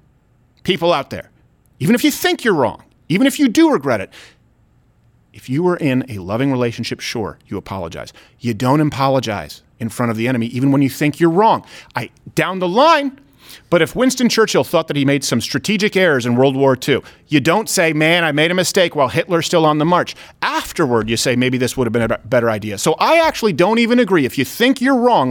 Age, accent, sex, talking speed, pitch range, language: 30-49, American, male, 220 wpm, 140-220 Hz, English